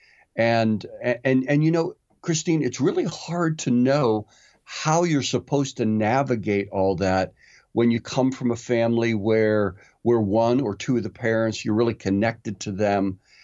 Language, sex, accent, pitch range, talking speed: English, male, American, 105-135 Hz, 165 wpm